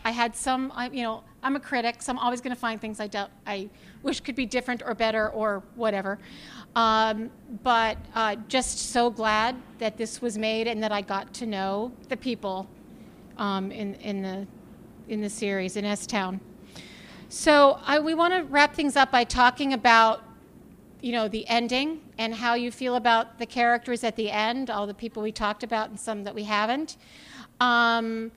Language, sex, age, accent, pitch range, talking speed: English, female, 40-59, American, 215-255 Hz, 195 wpm